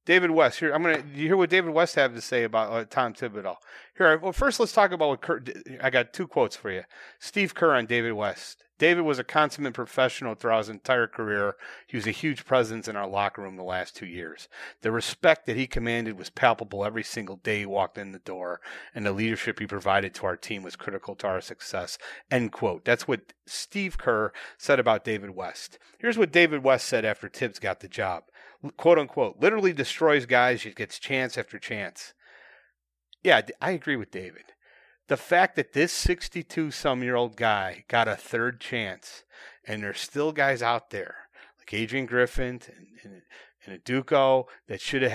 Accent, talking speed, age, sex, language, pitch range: American, 195 wpm, 40-59, male, English, 110-150 Hz